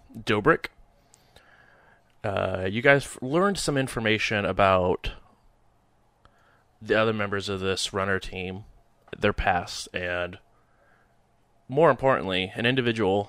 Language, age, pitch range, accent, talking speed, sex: English, 20-39, 95-120 Hz, American, 100 wpm, male